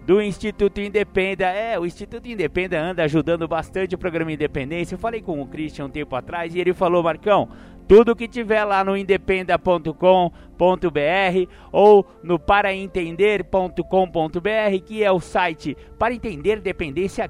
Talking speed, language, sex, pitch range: 145 wpm, Portuguese, male, 175-215 Hz